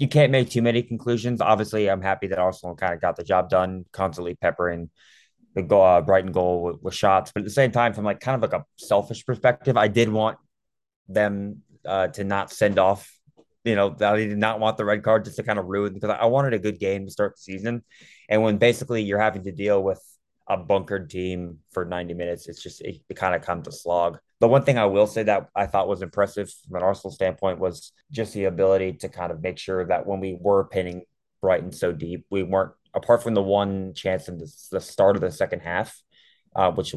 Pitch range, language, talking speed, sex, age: 90-110 Hz, English, 235 wpm, male, 20-39